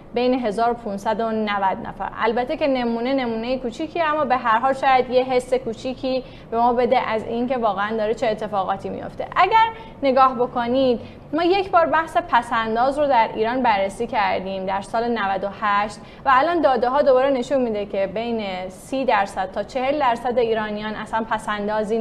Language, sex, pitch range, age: Persian, female, 210-260 Hz, 10-29